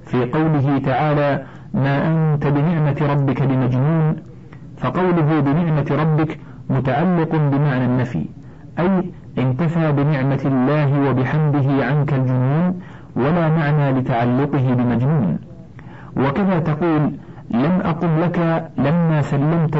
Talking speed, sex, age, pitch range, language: 95 wpm, male, 50-69, 140-160 Hz, Arabic